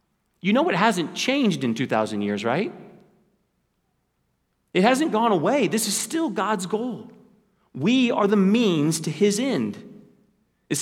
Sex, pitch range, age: male, 145-215 Hz, 40-59